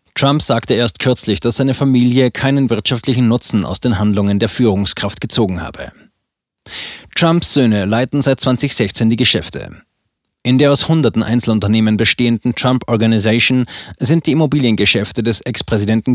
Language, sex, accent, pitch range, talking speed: German, male, German, 110-130 Hz, 140 wpm